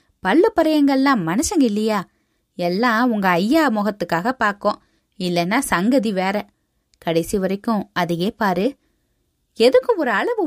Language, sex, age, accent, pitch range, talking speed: Tamil, female, 20-39, native, 195-295 Hz, 105 wpm